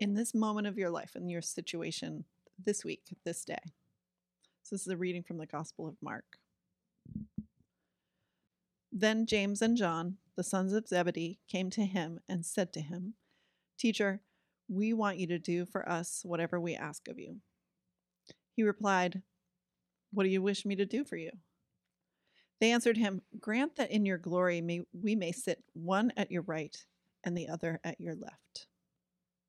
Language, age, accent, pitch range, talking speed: English, 30-49, American, 175-205 Hz, 170 wpm